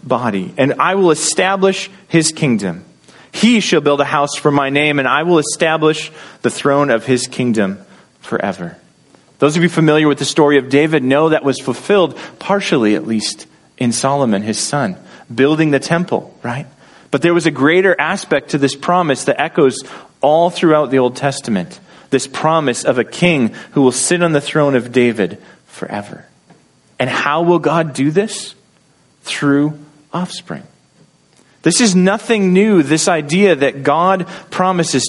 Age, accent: 30-49, American